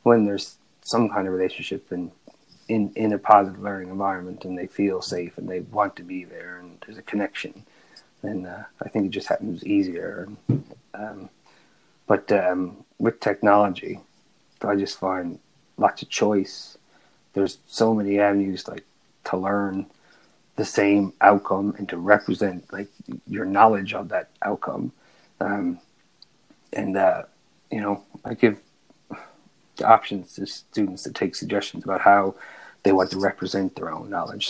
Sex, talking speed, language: male, 155 wpm, English